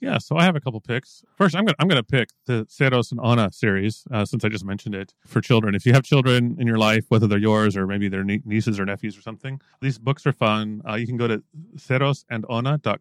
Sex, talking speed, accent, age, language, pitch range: male, 270 wpm, American, 30-49, English, 105-135 Hz